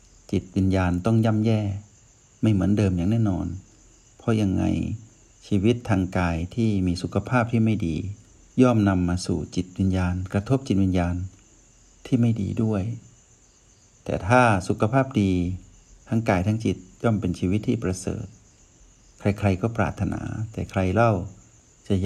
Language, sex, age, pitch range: Thai, male, 60-79, 90-110 Hz